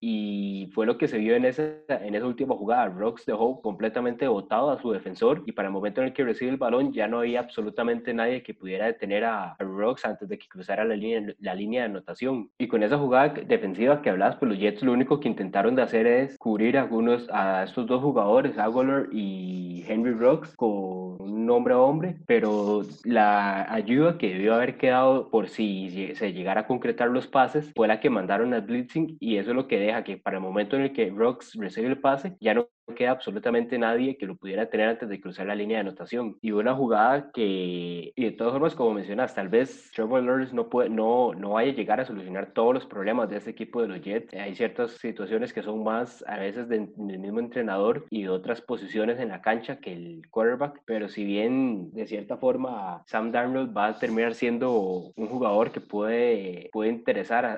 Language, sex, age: Spanish, male, 20-39